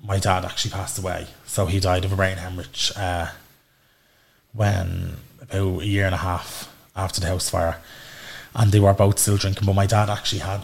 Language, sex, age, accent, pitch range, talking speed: English, male, 20-39, Irish, 95-115 Hz, 195 wpm